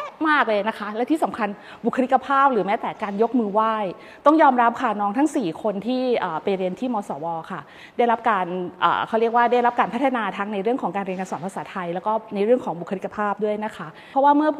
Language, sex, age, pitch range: Thai, female, 20-39, 190-245 Hz